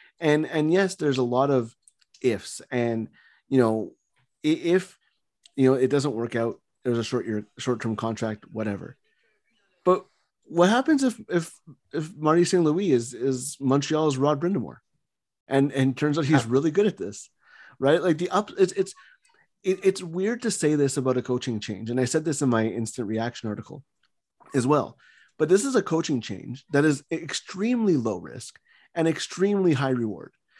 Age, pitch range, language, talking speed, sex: 30-49, 125-180 Hz, English, 175 wpm, male